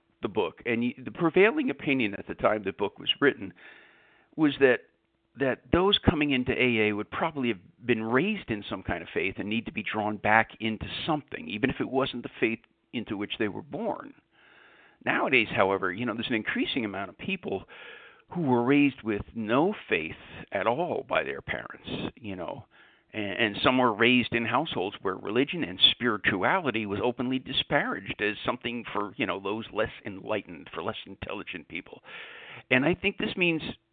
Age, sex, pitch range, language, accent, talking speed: 50-69, male, 110-165 Hz, English, American, 180 wpm